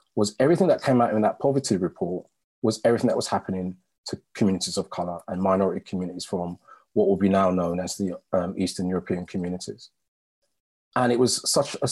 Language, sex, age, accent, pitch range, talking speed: English, male, 30-49, British, 90-115 Hz, 190 wpm